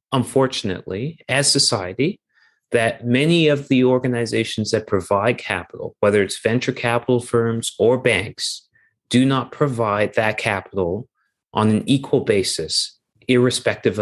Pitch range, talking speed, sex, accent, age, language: 110-140 Hz, 120 wpm, male, American, 30-49, English